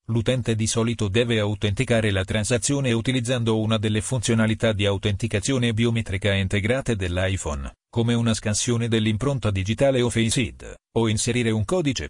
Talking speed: 140 wpm